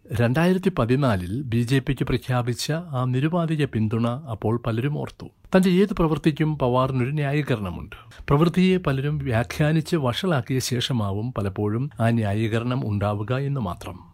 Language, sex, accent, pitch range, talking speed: Malayalam, male, native, 115-150 Hz, 120 wpm